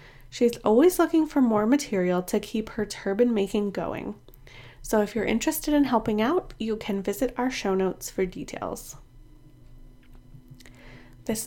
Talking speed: 145 wpm